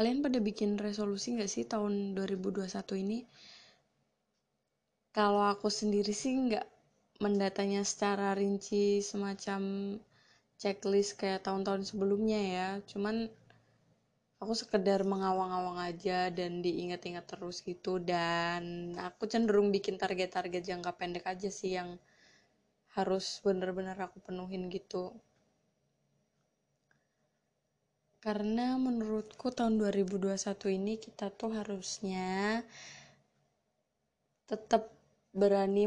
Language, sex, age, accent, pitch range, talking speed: Indonesian, female, 20-39, native, 185-205 Hz, 95 wpm